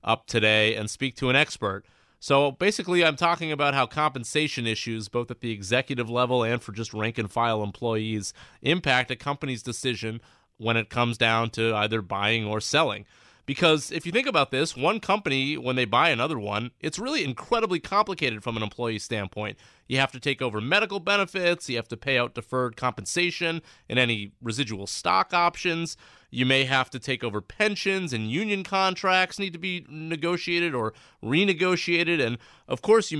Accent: American